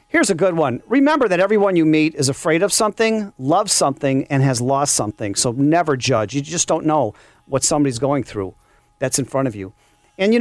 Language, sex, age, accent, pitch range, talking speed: English, male, 40-59, American, 145-210 Hz, 215 wpm